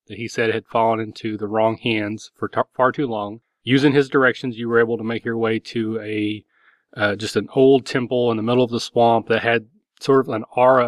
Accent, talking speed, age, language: American, 235 wpm, 30-49, English